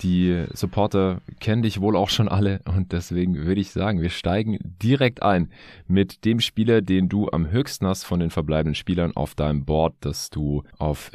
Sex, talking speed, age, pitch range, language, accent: male, 190 wpm, 30-49, 80-105 Hz, German, German